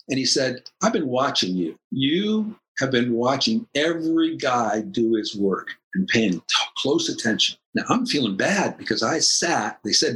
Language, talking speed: English, 175 wpm